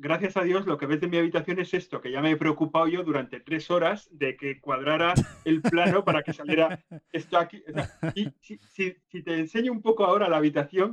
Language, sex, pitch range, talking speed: Spanish, male, 145-180 Hz, 235 wpm